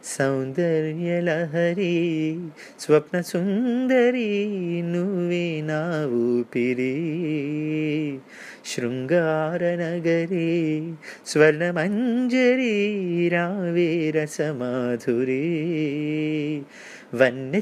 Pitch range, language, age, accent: 125-190 Hz, Telugu, 30-49, native